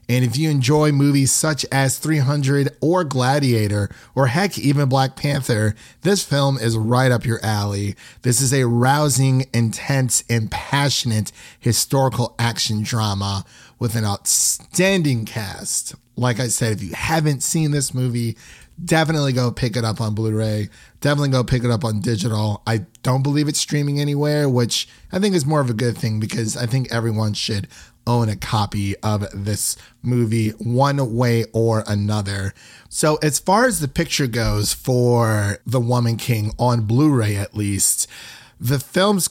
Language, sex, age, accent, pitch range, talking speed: English, male, 30-49, American, 115-140 Hz, 160 wpm